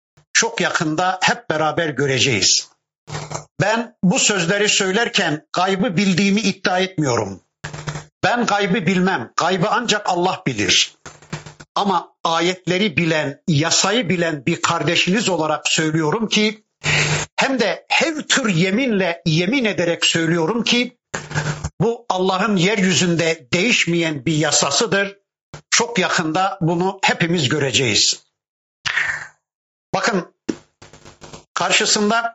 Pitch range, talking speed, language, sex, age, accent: 165-205 Hz, 95 wpm, Turkish, male, 60-79, native